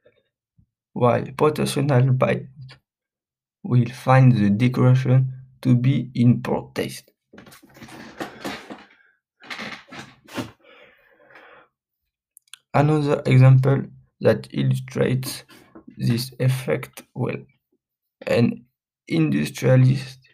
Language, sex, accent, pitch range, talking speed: English, male, French, 120-135 Hz, 60 wpm